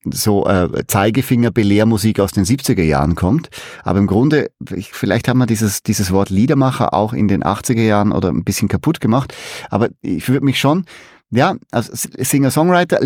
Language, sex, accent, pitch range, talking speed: German, male, German, 110-140 Hz, 165 wpm